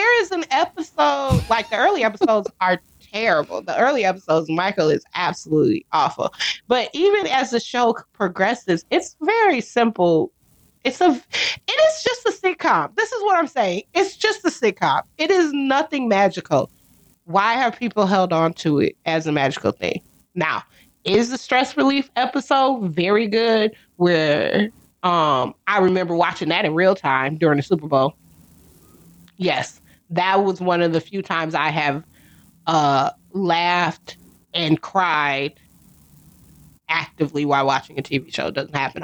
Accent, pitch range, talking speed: American, 170-280 Hz, 155 wpm